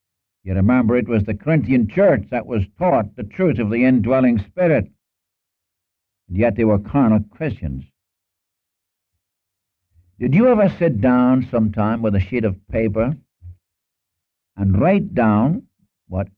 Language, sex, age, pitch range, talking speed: English, male, 60-79, 95-125 Hz, 135 wpm